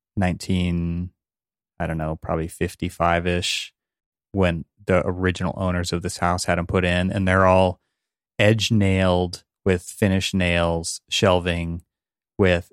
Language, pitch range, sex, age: English, 85-105 Hz, male, 30-49